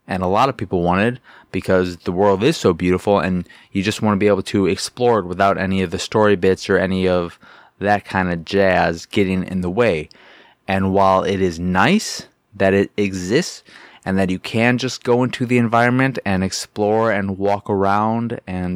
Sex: male